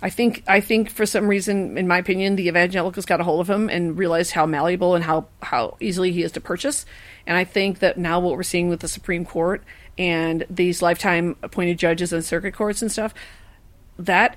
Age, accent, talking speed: 40-59, American, 215 wpm